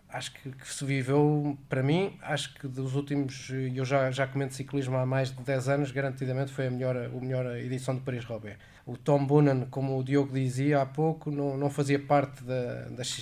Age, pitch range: 20-39, 135-150 Hz